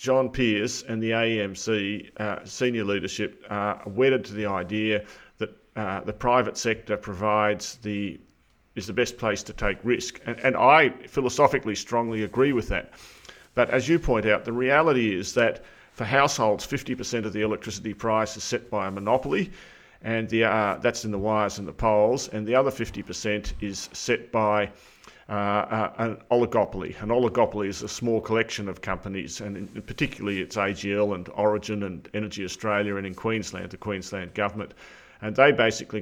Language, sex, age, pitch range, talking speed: English, male, 40-59, 100-115 Hz, 165 wpm